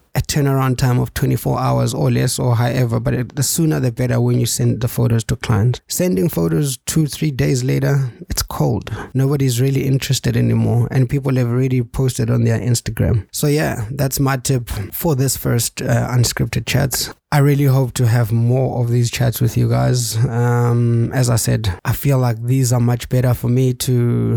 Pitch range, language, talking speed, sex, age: 120-135 Hz, English, 190 wpm, male, 20-39